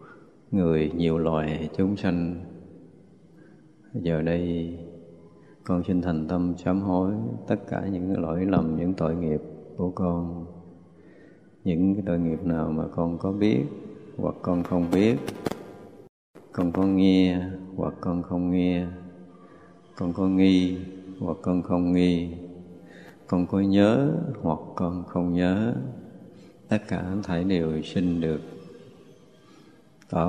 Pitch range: 85-95 Hz